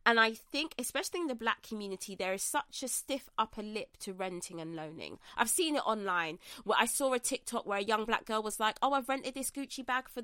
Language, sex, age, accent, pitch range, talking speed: English, female, 20-39, British, 220-275 Hz, 245 wpm